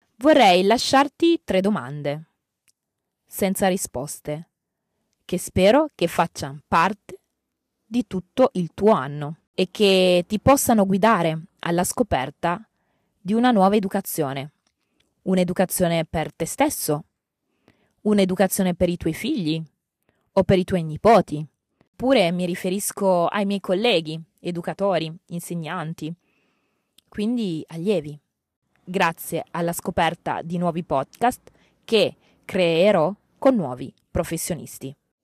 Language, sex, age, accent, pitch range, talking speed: Italian, female, 20-39, native, 160-210 Hz, 105 wpm